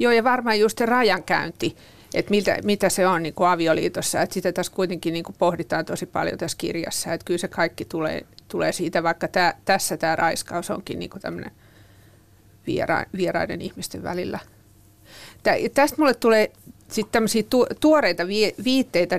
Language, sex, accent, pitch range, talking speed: Finnish, female, native, 170-205 Hz, 155 wpm